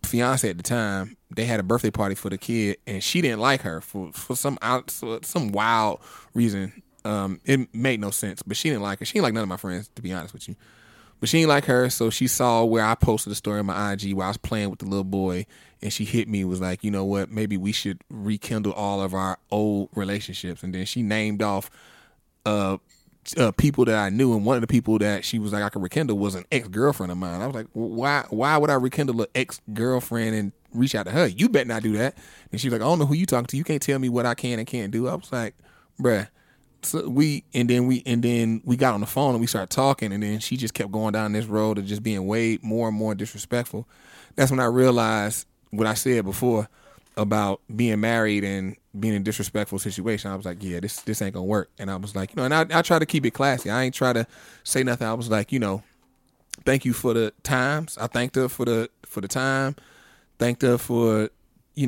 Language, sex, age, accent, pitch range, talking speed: English, male, 20-39, American, 100-125 Hz, 255 wpm